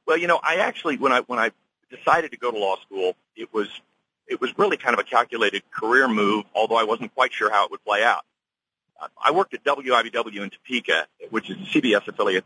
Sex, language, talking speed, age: male, English, 230 wpm, 40-59